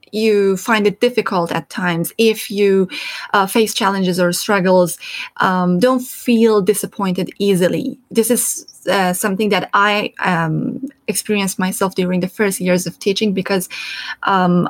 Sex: female